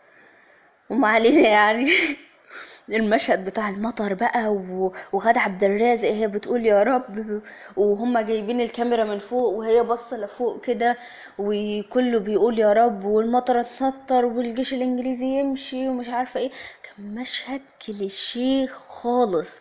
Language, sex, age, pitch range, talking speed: Arabic, female, 20-39, 195-240 Hz, 115 wpm